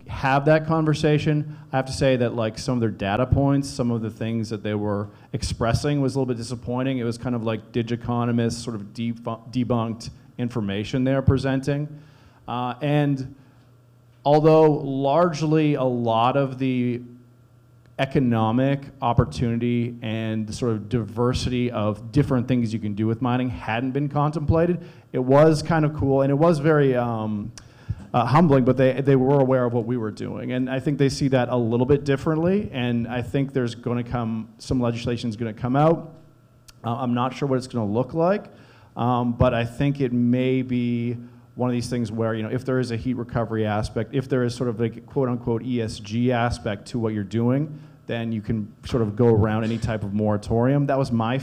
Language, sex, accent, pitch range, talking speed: English, male, American, 115-135 Hz, 195 wpm